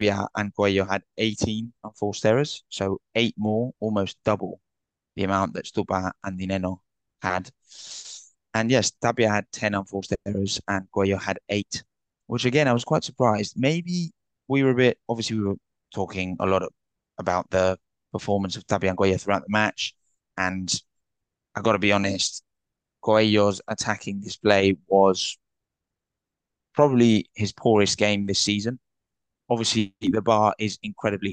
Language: English